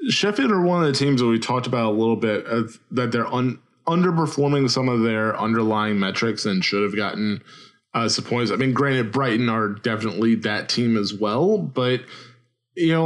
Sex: male